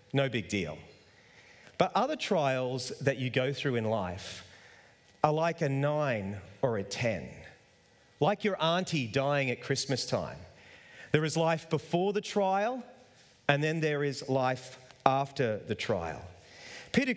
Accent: Australian